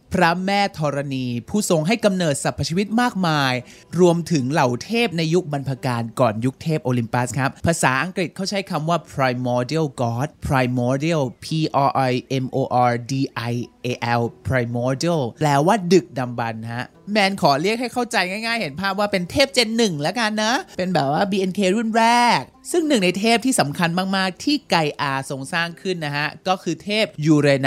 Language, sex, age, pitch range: Thai, male, 20-39, 140-215 Hz